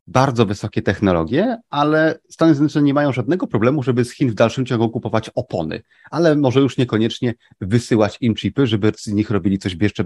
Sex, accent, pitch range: male, native, 100-130 Hz